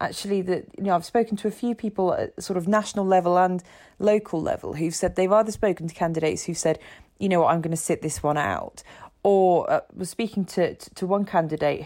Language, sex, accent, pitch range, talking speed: English, female, British, 160-200 Hz, 235 wpm